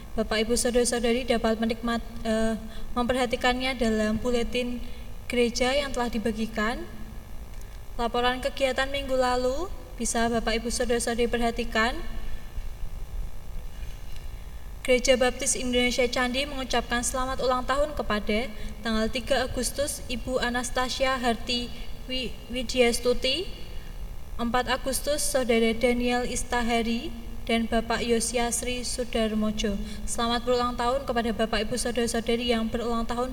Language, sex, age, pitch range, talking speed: Indonesian, female, 20-39, 225-250 Hz, 105 wpm